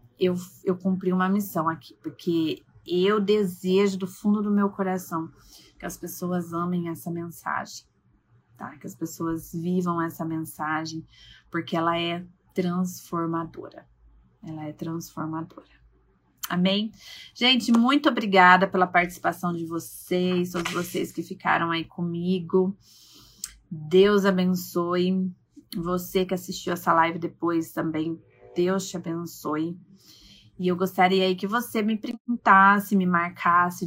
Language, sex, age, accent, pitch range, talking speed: Portuguese, female, 30-49, Brazilian, 165-190 Hz, 120 wpm